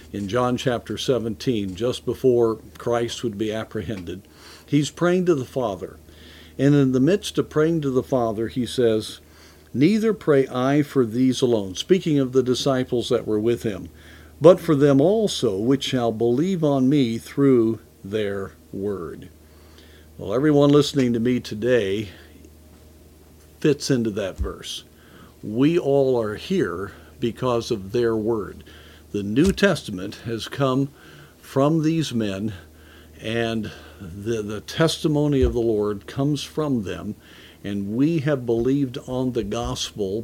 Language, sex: English, male